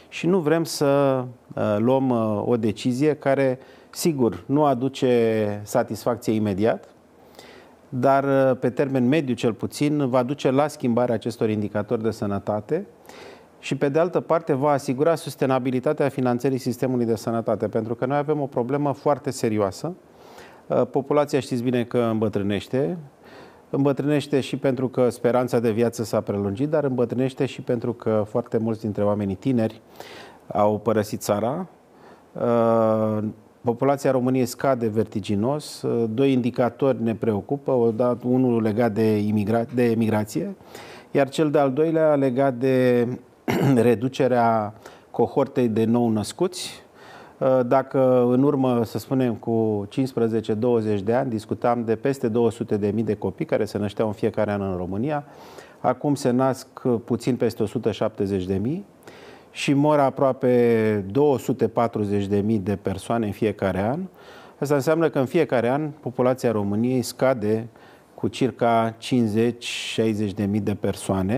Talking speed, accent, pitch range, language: 130 wpm, native, 110-135 Hz, Romanian